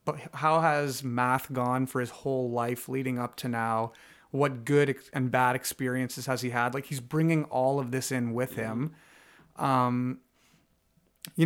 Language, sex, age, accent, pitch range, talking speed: English, male, 30-49, American, 125-145 Hz, 170 wpm